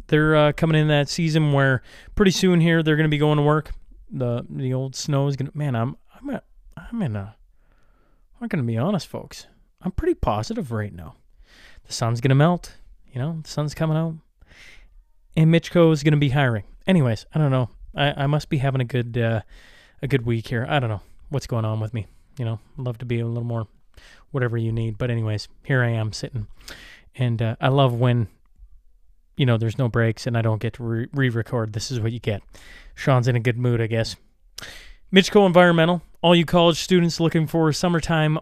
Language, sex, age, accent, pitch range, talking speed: English, male, 20-39, American, 120-150 Hz, 210 wpm